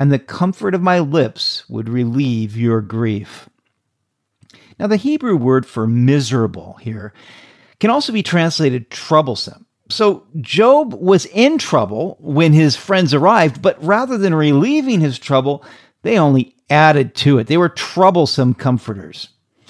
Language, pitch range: English, 125-185 Hz